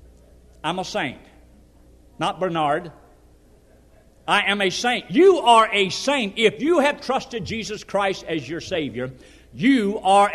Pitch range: 195-285 Hz